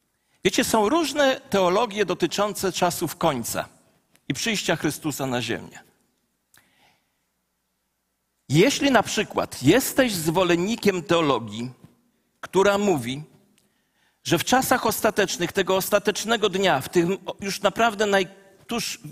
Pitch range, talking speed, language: 180-230 Hz, 105 wpm, Polish